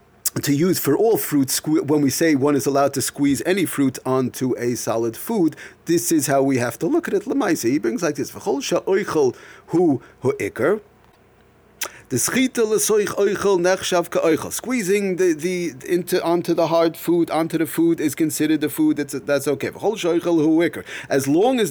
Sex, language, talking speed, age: male, English, 150 wpm, 30-49